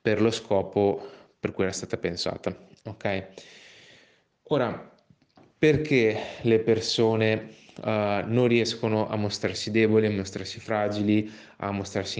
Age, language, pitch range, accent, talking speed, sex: 20-39, Italian, 100-115 Hz, native, 115 wpm, male